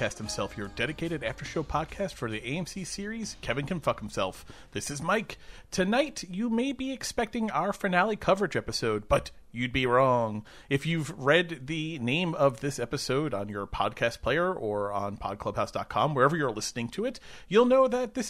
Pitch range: 115-180 Hz